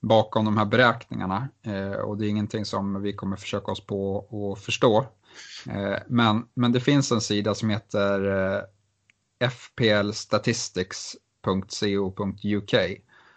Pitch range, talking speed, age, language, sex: 100-110 Hz, 110 wpm, 30-49, Swedish, male